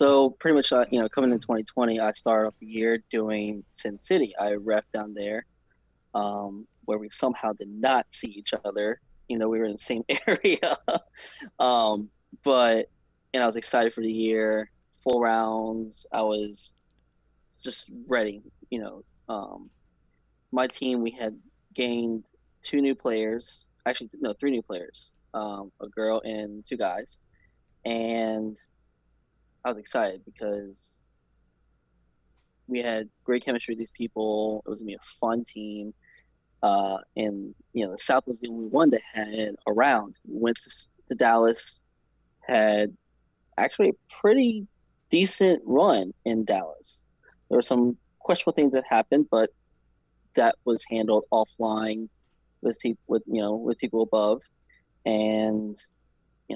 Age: 20-39